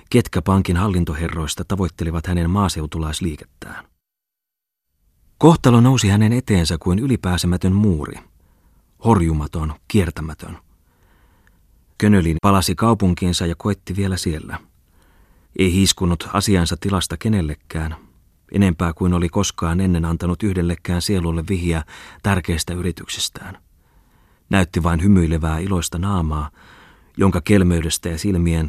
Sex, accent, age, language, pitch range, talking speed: male, native, 30-49, Finnish, 80-95 Hz, 100 wpm